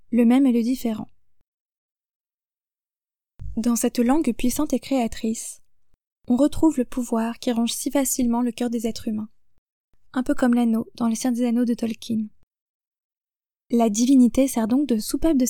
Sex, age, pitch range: female, 20-39, 230-265 Hz